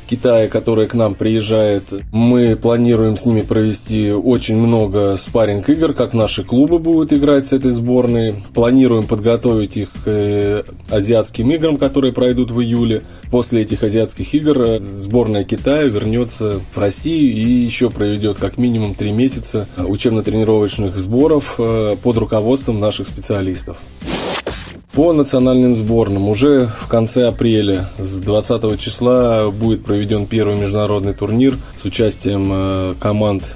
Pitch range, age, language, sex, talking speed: 100-120 Hz, 20-39, Russian, male, 130 wpm